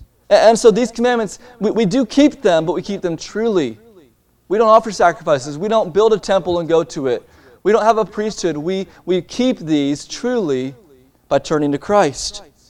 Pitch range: 140-180 Hz